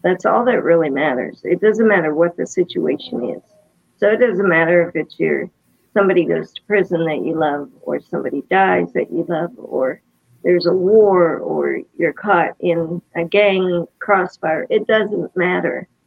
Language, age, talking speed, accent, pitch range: English, 50-69, 170 wpm, American, 165-200 Hz